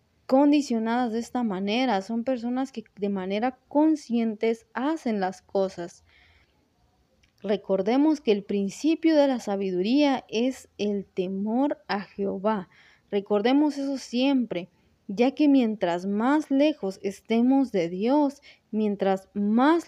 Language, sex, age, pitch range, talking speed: Spanish, female, 20-39, 205-275 Hz, 115 wpm